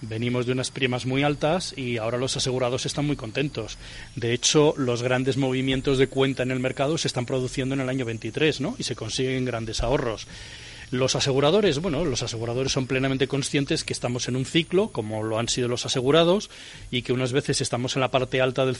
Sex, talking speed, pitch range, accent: male, 210 wpm, 120-145 Hz, Spanish